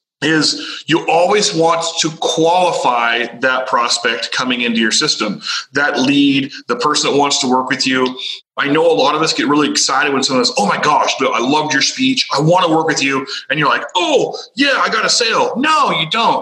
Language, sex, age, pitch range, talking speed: English, male, 30-49, 145-235 Hz, 215 wpm